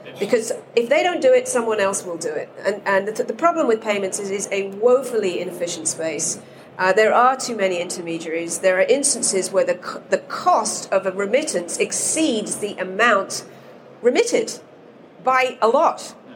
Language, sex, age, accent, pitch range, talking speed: English, female, 40-59, British, 185-250 Hz, 175 wpm